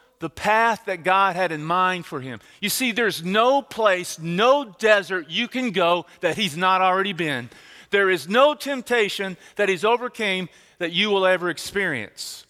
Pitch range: 130-195 Hz